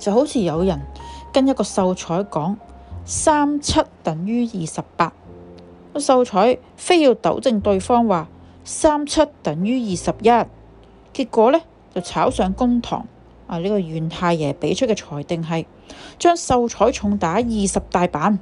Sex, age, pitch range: female, 30-49, 160-230 Hz